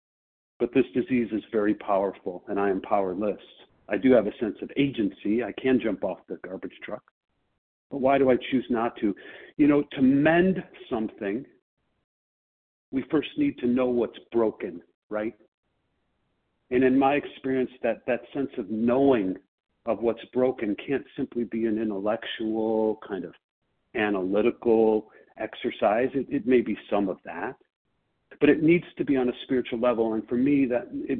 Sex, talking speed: male, 165 wpm